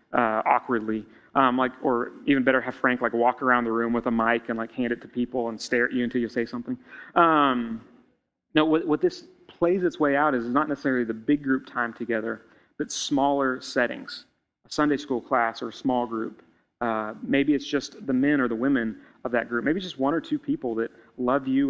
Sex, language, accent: male, English, American